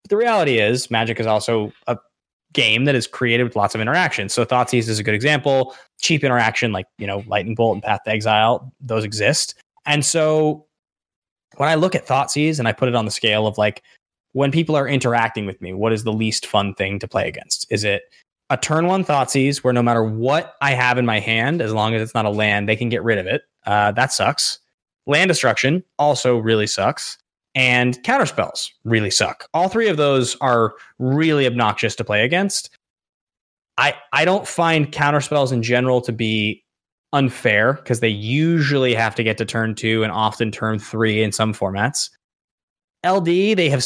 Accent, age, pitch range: American, 20-39, 110-145 Hz